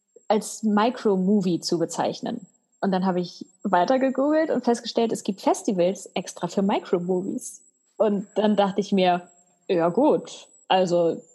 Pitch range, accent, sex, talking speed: 200-260 Hz, German, female, 130 wpm